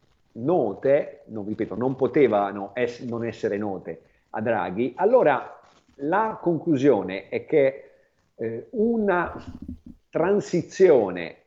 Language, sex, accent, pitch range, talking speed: Italian, male, native, 120-200 Hz, 100 wpm